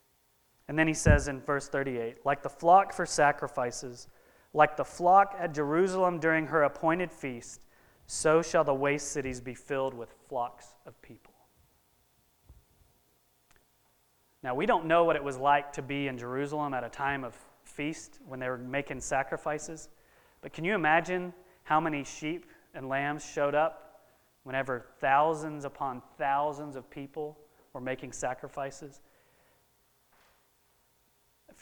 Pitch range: 125-155 Hz